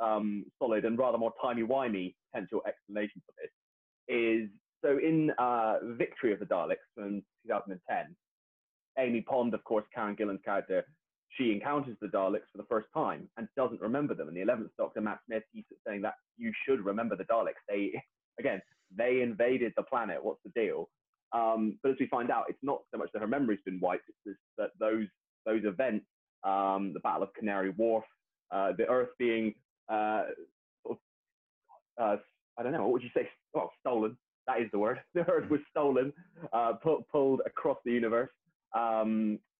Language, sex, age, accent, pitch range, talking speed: English, male, 30-49, British, 100-130 Hz, 180 wpm